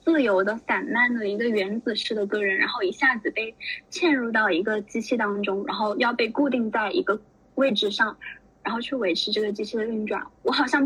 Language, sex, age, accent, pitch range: Chinese, female, 10-29, native, 210-270 Hz